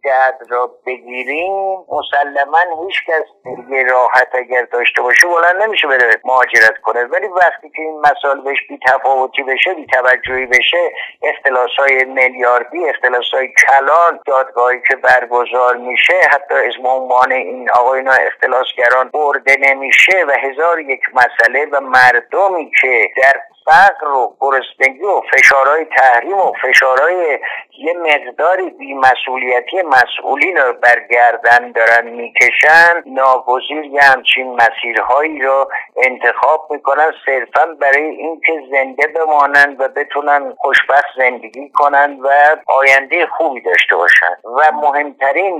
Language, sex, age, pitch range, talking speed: Persian, male, 50-69, 125-155 Hz, 120 wpm